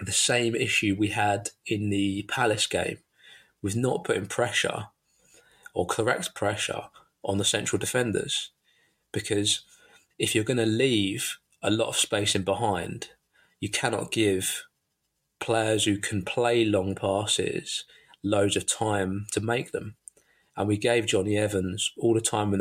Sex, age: male, 20-39